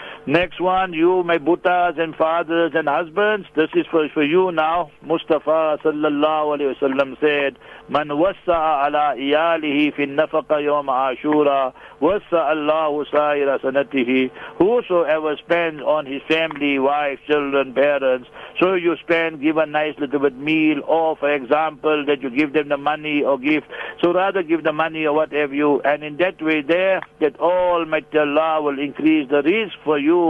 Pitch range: 145-165 Hz